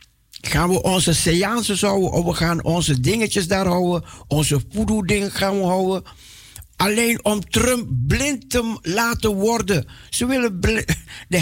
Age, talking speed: 60-79, 145 wpm